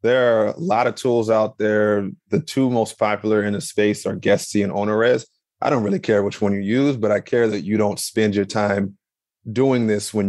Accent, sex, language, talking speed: American, male, English, 225 wpm